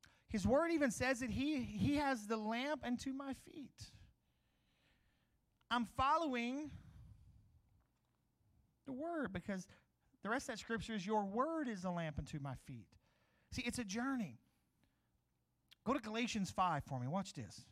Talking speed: 150 wpm